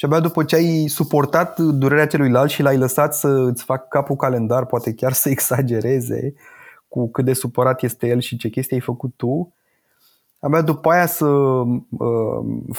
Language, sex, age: Romanian, male, 20-39